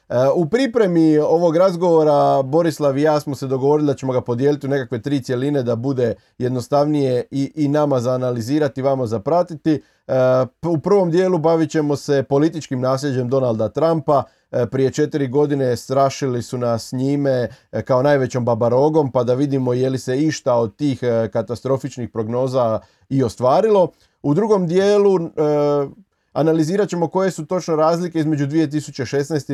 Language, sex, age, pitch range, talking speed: Croatian, male, 30-49, 125-150 Hz, 145 wpm